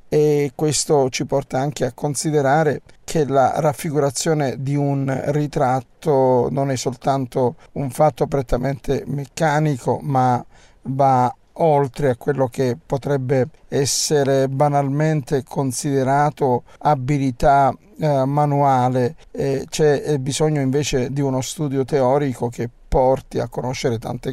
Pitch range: 135-155 Hz